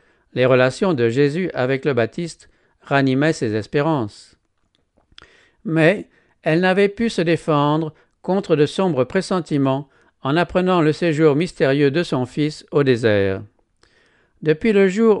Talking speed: 130 wpm